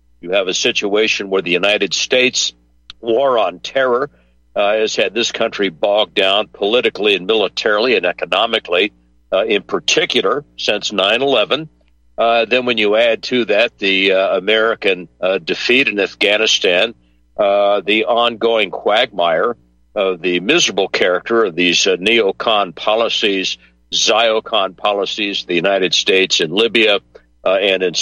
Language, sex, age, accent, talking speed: English, male, 60-79, American, 140 wpm